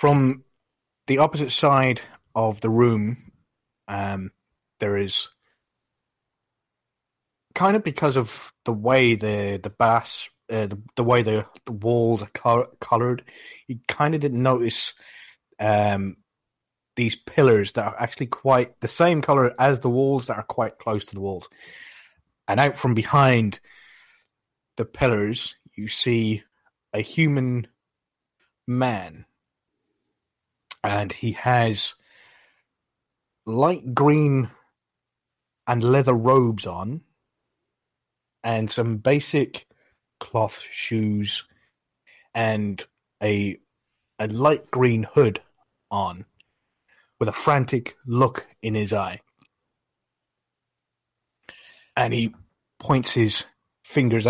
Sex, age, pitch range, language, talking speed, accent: male, 30-49, 105-130 Hz, English, 110 wpm, British